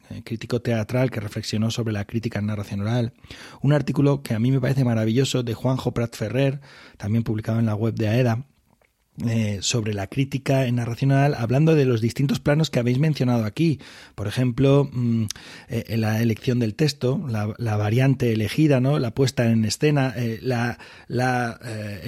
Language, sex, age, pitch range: Spanish, male, 30-49, 115-140 Hz